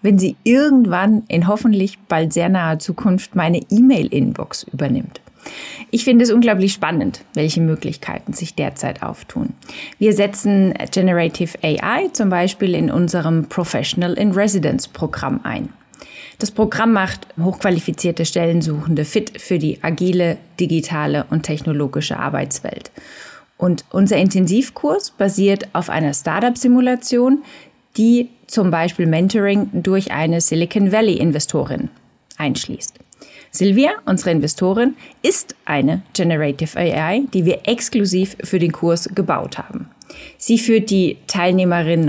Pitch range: 170-220 Hz